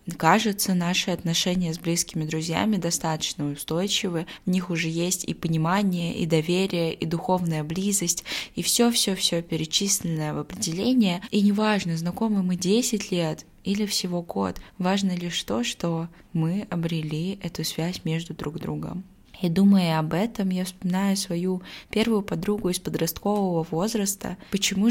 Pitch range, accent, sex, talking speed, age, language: 165-195 Hz, native, female, 140 wpm, 20-39, Russian